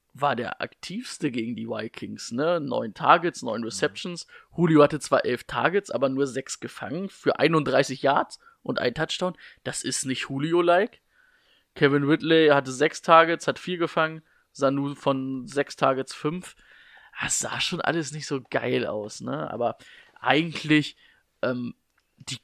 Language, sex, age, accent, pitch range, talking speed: German, male, 20-39, German, 135-165 Hz, 150 wpm